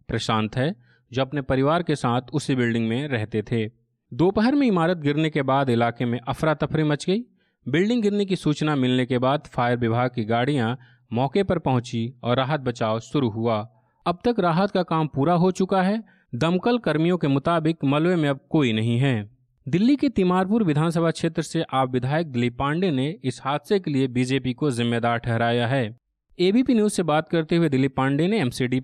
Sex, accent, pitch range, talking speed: male, native, 125-170 Hz, 190 wpm